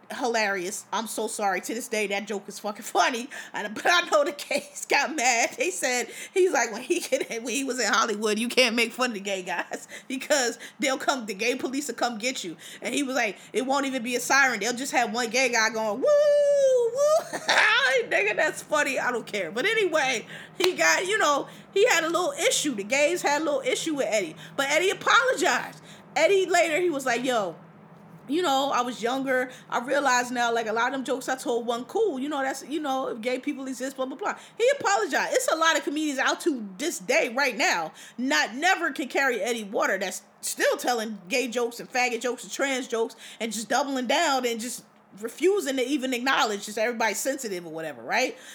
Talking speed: 220 wpm